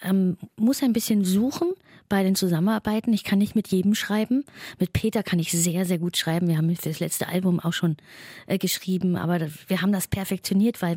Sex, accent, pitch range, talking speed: female, German, 175-205 Hz, 215 wpm